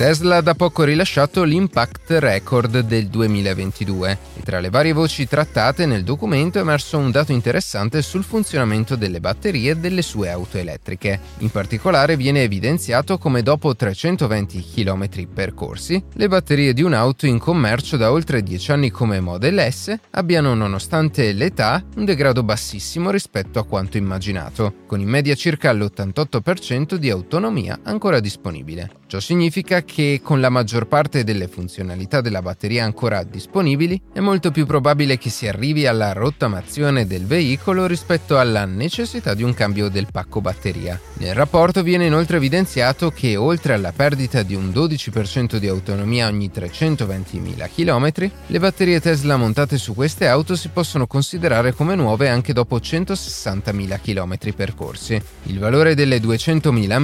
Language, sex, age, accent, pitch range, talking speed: Italian, male, 30-49, native, 105-160 Hz, 150 wpm